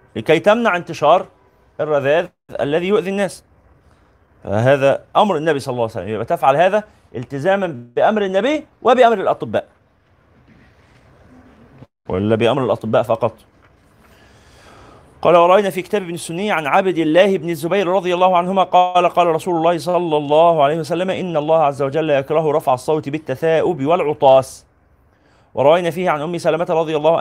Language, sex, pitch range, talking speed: Arabic, male, 125-175 Hz, 140 wpm